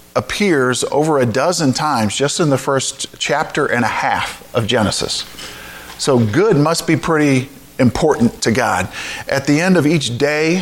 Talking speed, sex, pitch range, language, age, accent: 165 wpm, male, 125-155 Hz, English, 40-59, American